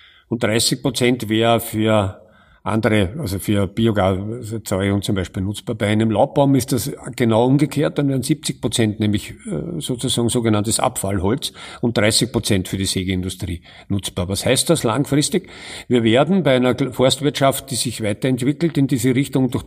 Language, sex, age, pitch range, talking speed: German, male, 50-69, 100-130 Hz, 155 wpm